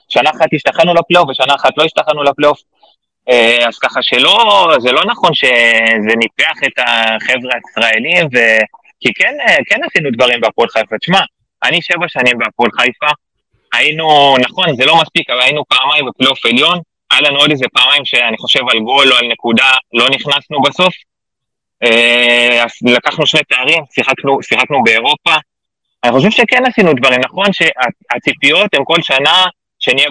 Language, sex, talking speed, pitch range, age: Hebrew, male, 150 wpm, 125-165 Hz, 20-39